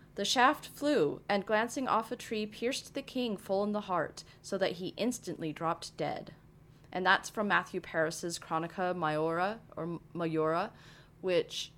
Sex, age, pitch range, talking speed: female, 20-39, 155-200 Hz, 160 wpm